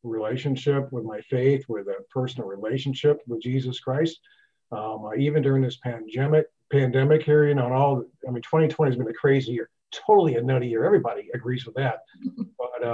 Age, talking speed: 50-69, 180 wpm